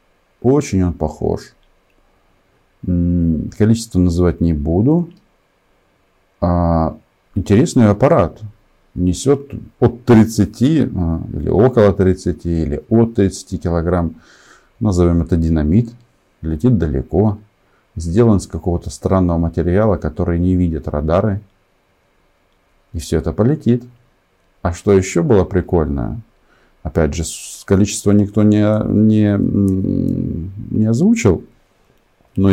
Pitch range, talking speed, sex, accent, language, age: 85-105 Hz, 95 wpm, male, native, Russian, 50-69